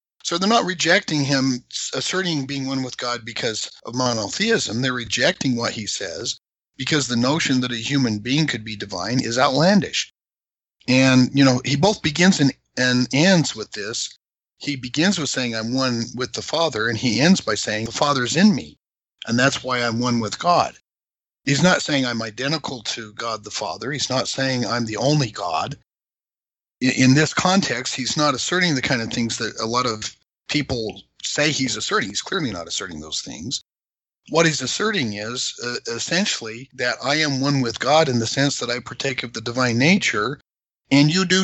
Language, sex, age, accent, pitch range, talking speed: English, male, 50-69, American, 120-155 Hz, 190 wpm